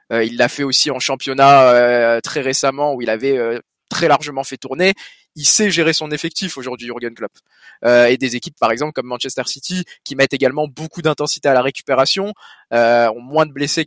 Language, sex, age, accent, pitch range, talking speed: French, male, 20-39, French, 125-160 Hz, 210 wpm